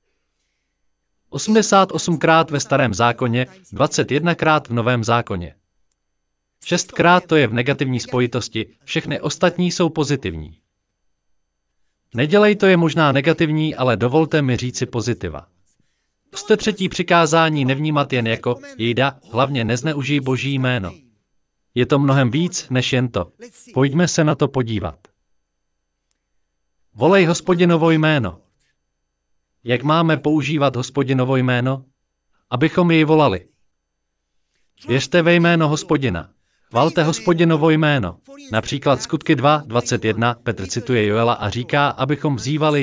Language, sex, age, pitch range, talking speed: Slovak, male, 40-59, 100-155 Hz, 115 wpm